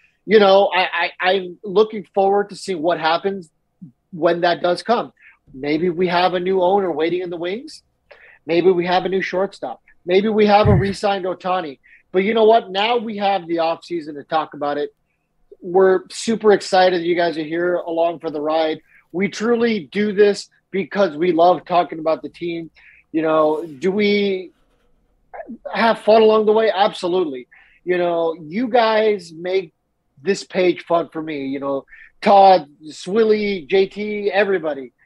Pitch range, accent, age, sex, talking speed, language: 170-205 Hz, American, 30-49, male, 170 wpm, English